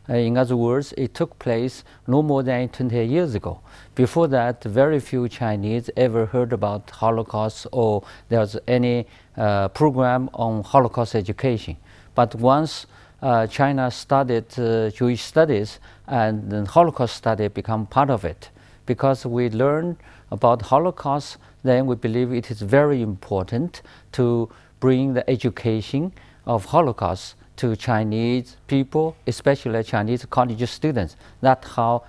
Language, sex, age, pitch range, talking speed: English, male, 50-69, 110-135 Hz, 135 wpm